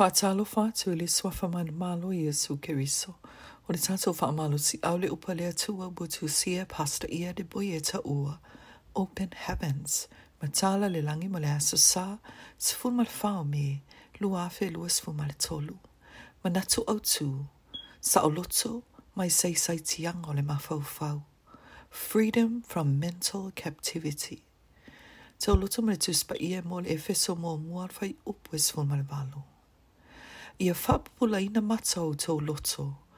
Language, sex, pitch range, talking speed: English, female, 150-195 Hz, 110 wpm